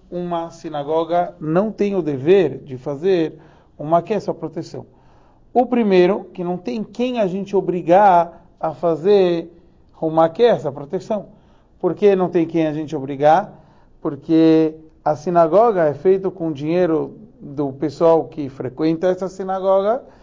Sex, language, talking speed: male, Portuguese, 135 wpm